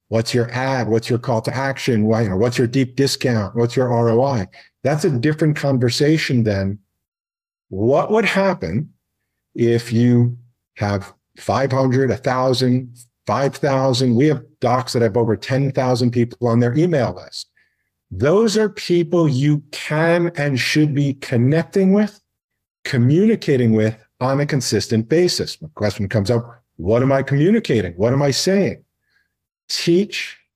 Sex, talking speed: male, 140 wpm